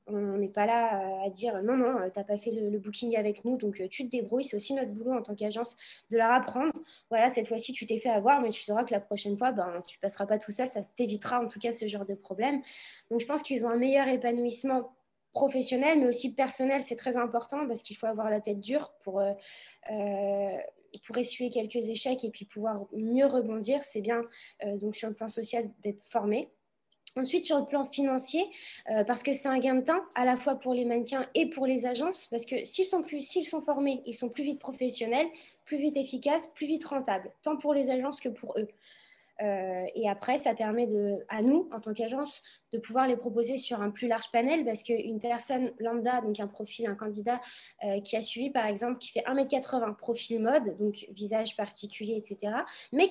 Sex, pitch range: female, 215-260 Hz